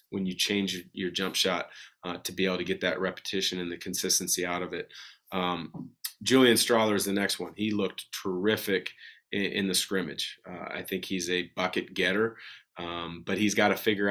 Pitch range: 95-105 Hz